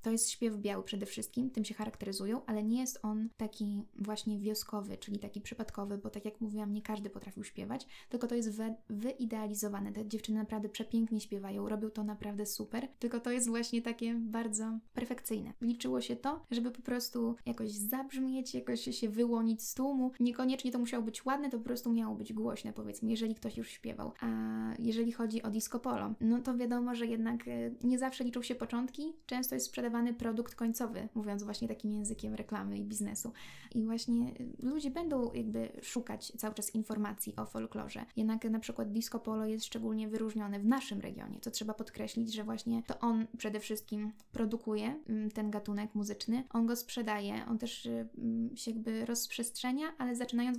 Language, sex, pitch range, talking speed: Polish, female, 215-240 Hz, 180 wpm